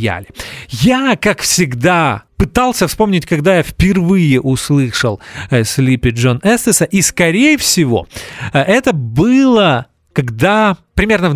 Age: 30-49